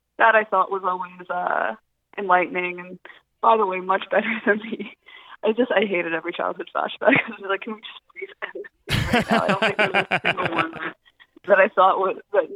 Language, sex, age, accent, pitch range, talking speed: English, female, 20-39, American, 175-230 Hz, 220 wpm